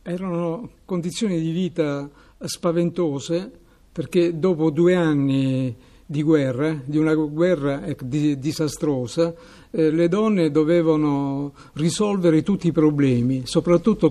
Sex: male